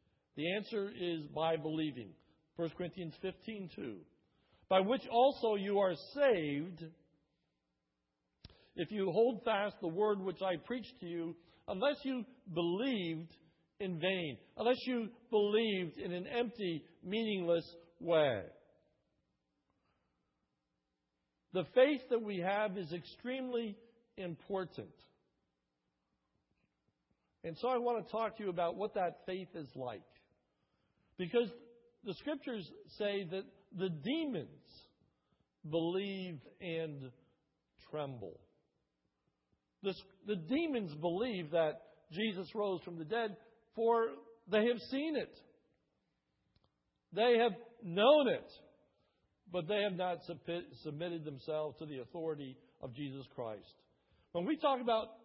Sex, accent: male, American